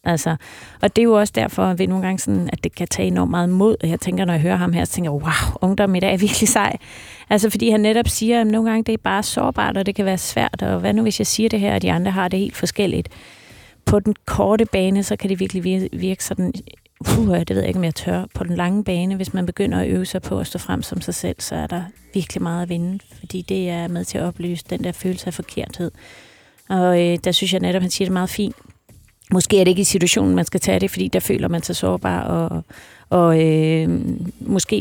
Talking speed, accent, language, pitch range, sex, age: 270 wpm, native, Danish, 160-200 Hz, female, 30-49